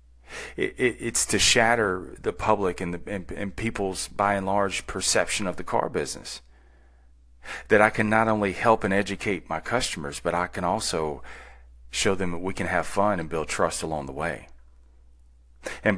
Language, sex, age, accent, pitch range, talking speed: English, male, 30-49, American, 65-105 Hz, 180 wpm